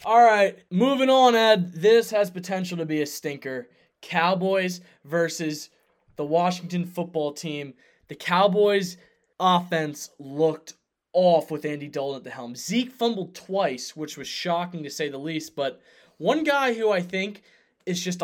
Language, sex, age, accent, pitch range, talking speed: English, male, 20-39, American, 150-185 Hz, 155 wpm